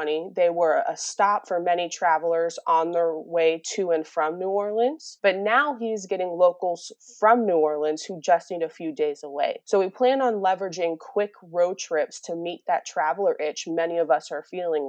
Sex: female